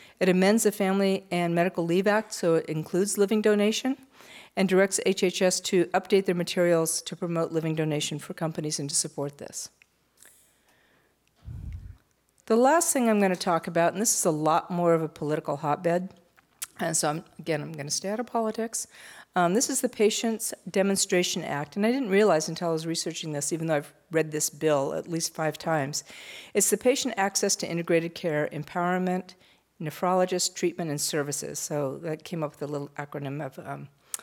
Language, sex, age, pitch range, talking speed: English, female, 50-69, 160-200 Hz, 180 wpm